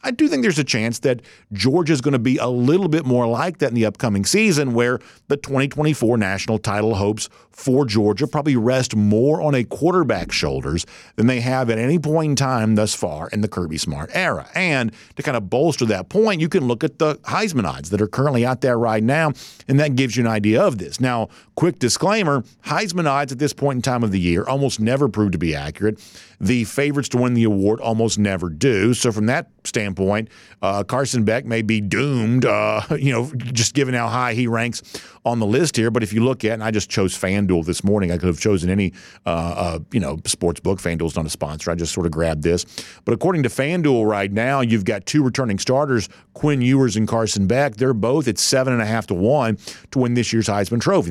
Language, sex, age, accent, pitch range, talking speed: English, male, 50-69, American, 105-135 Hz, 230 wpm